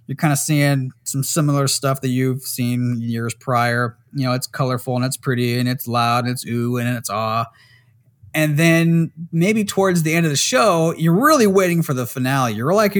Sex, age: male, 30-49